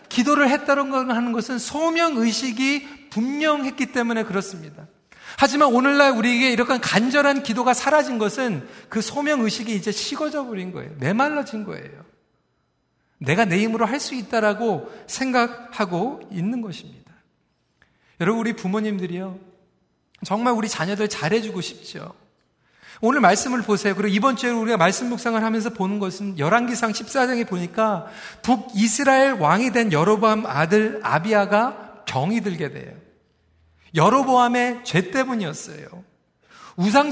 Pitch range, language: 205-255 Hz, Korean